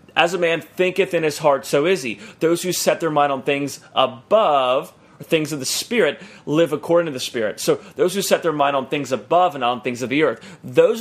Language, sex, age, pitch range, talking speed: English, male, 30-49, 135-170 Hz, 235 wpm